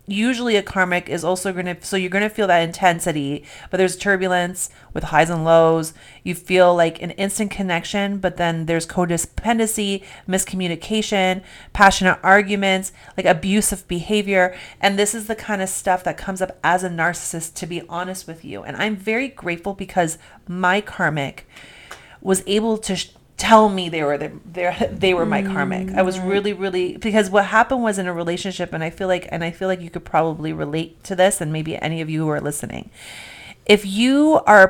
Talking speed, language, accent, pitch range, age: 190 wpm, English, American, 170-195 Hz, 30-49